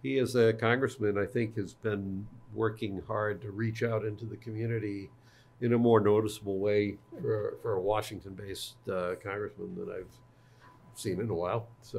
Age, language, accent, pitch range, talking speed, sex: 60-79, English, American, 100-125 Hz, 175 wpm, male